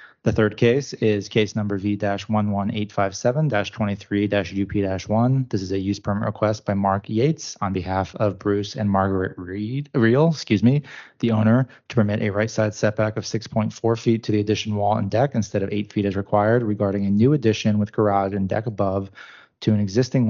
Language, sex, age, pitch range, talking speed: English, male, 20-39, 100-110 Hz, 180 wpm